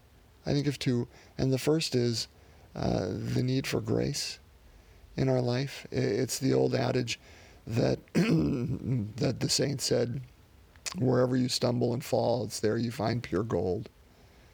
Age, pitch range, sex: 40-59, 90-130 Hz, male